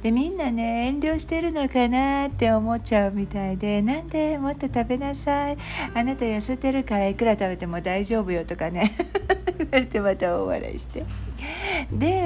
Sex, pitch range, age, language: female, 185-255 Hz, 60-79, Japanese